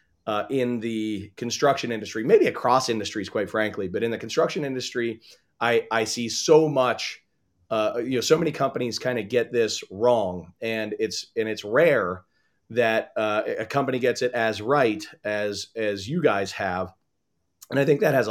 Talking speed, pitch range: 170 wpm, 105-130 Hz